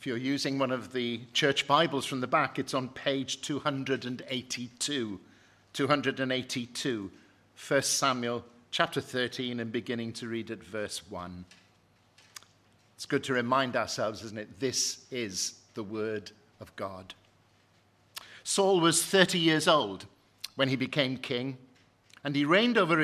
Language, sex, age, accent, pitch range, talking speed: English, male, 50-69, British, 120-160 Hz, 140 wpm